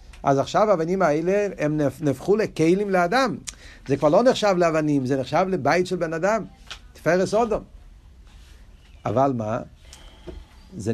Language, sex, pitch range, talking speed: Hebrew, male, 130-210 Hz, 130 wpm